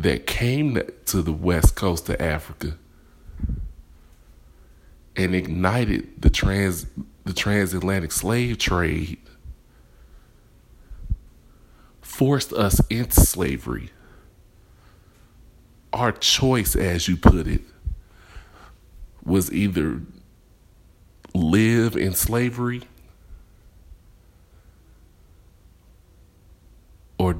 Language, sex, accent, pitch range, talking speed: English, male, American, 80-100 Hz, 70 wpm